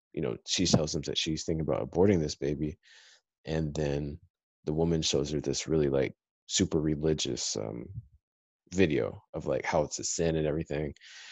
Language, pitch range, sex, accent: English, 75-85 Hz, male, American